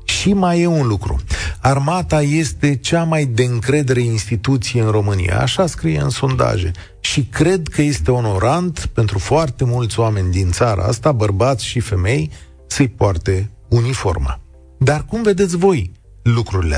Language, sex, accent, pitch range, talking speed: Romanian, male, native, 105-155 Hz, 145 wpm